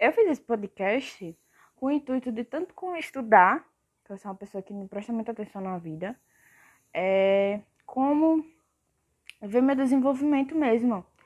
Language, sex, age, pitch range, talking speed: Portuguese, female, 10-29, 200-270 Hz, 155 wpm